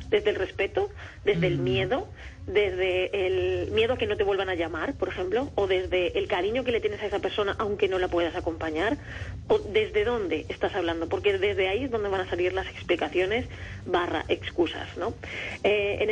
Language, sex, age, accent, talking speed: Spanish, female, 30-49, Spanish, 195 wpm